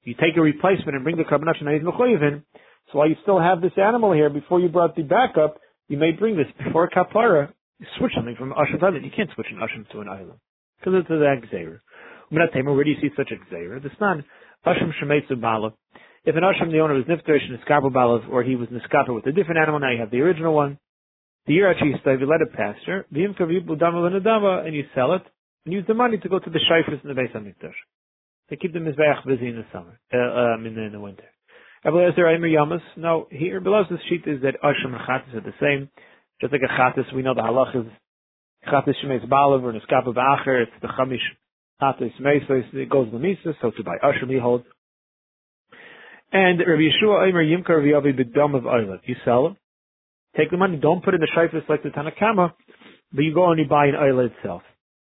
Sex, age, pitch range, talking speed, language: male, 40-59, 130-170 Hz, 220 wpm, English